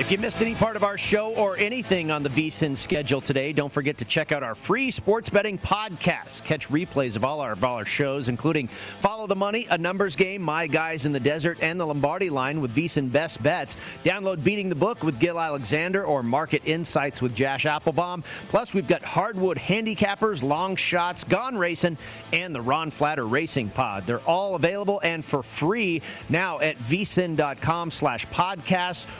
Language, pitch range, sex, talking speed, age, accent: English, 145-190 Hz, male, 190 wpm, 40-59, American